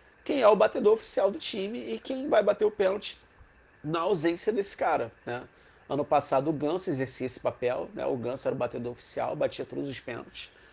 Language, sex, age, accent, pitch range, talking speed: Portuguese, male, 30-49, Brazilian, 125-165 Hz, 200 wpm